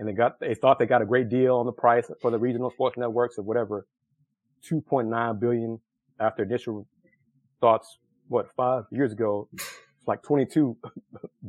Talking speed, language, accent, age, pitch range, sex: 185 wpm, English, American, 30-49, 115-150 Hz, male